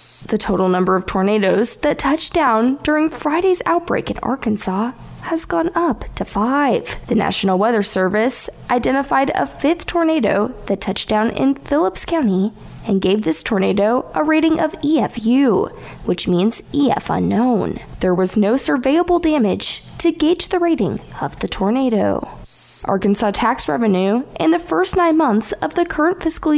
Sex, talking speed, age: female, 155 wpm, 10-29